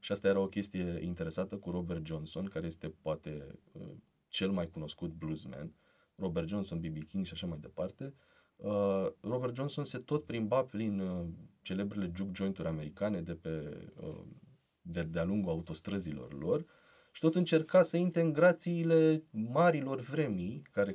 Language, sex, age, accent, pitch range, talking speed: Romanian, male, 20-39, native, 90-145 Hz, 150 wpm